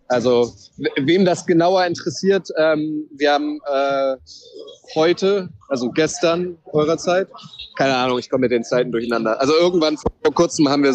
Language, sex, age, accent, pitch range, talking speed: German, male, 30-49, German, 130-160 Hz, 160 wpm